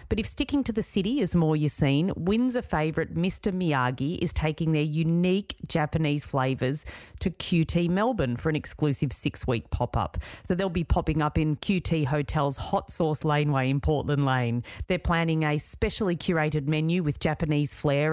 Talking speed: 170 wpm